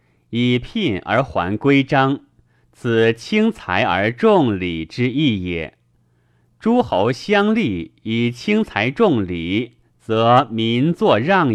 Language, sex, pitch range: Chinese, male, 105-145 Hz